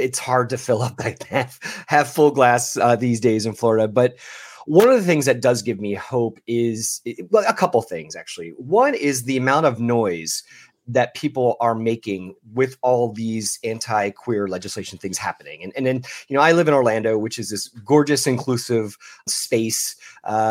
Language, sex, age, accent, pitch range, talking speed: English, male, 30-49, American, 110-140 Hz, 185 wpm